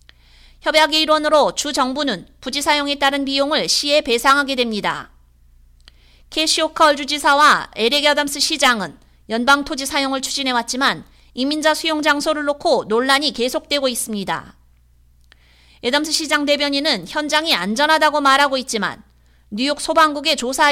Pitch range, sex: 225-300 Hz, female